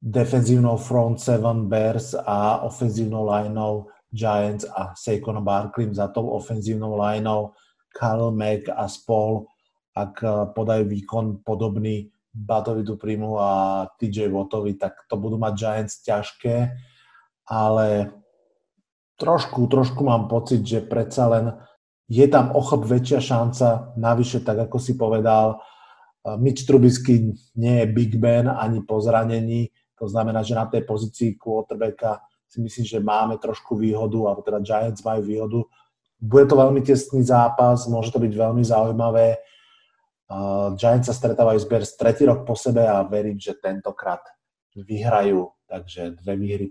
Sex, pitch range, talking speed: male, 105-125 Hz, 135 wpm